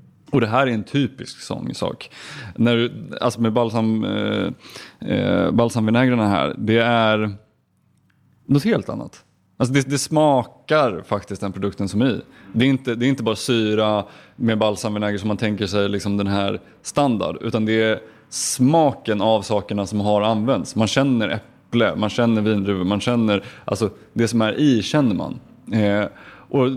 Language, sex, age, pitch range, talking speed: Swedish, male, 20-39, 105-120 Hz, 160 wpm